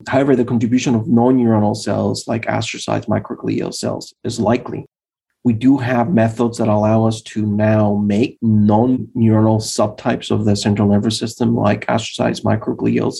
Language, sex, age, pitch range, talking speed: English, male, 30-49, 105-120 Hz, 145 wpm